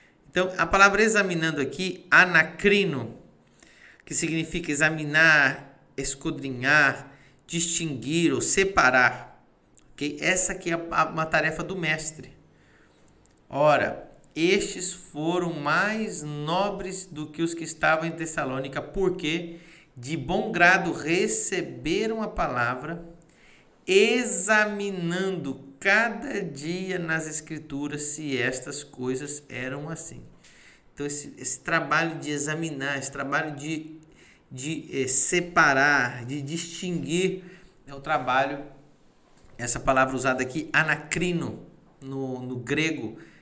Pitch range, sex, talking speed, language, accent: 135-175 Hz, male, 100 wpm, Portuguese, Brazilian